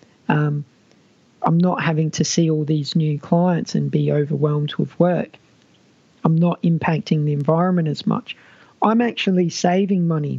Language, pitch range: English, 155-180 Hz